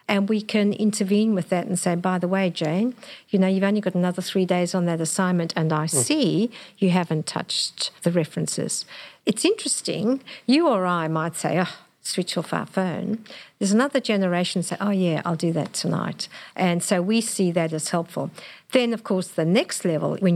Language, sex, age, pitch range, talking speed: English, female, 50-69, 170-215 Hz, 195 wpm